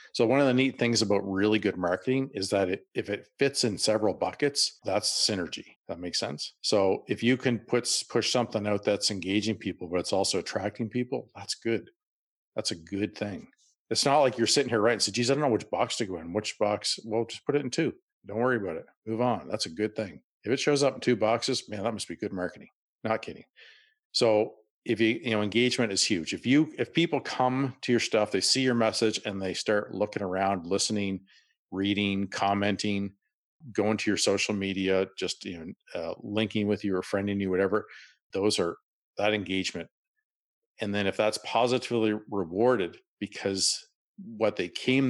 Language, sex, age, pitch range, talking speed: English, male, 50-69, 100-125 Hz, 205 wpm